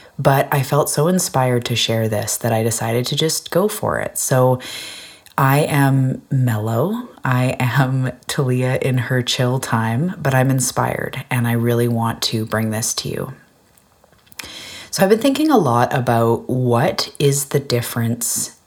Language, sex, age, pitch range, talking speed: English, female, 30-49, 115-130 Hz, 160 wpm